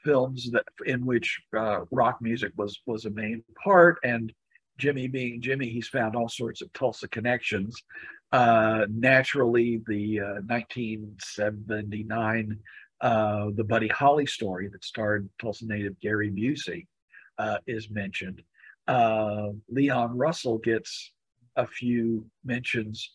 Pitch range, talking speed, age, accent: 105-120 Hz, 125 wpm, 50-69, American